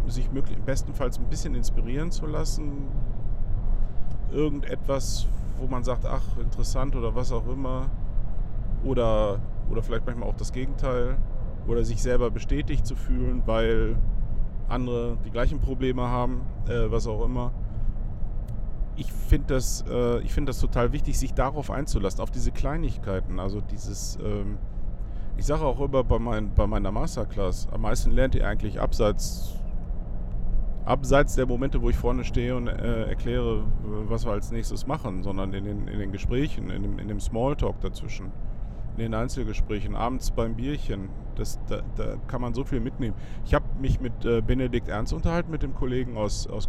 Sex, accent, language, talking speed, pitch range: male, German, German, 165 wpm, 105-125 Hz